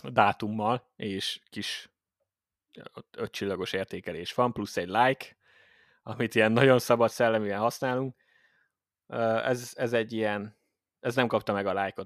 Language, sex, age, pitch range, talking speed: Hungarian, male, 20-39, 100-120 Hz, 125 wpm